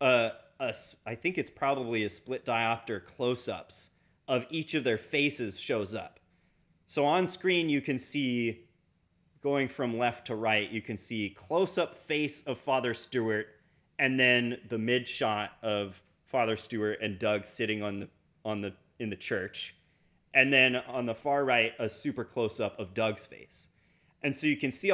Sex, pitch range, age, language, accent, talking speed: male, 120-170 Hz, 30-49, English, American, 170 wpm